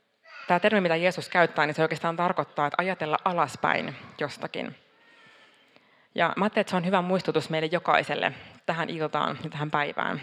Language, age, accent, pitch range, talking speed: Finnish, 30-49, native, 150-175 Hz, 160 wpm